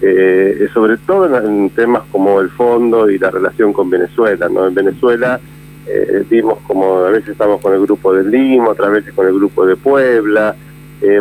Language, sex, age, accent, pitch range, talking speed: Spanish, male, 40-59, Argentinian, 105-145 Hz, 185 wpm